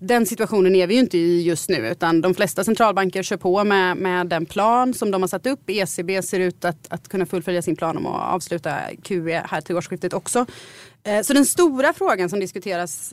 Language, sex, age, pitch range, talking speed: Swedish, female, 30-49, 175-220 Hz, 220 wpm